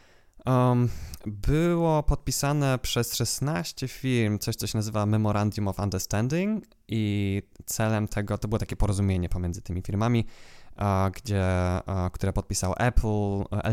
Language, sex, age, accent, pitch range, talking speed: Polish, male, 20-39, native, 95-115 Hz, 110 wpm